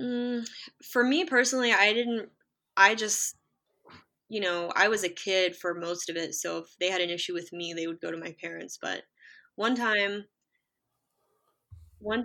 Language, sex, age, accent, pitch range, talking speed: English, female, 10-29, American, 170-205 Hz, 170 wpm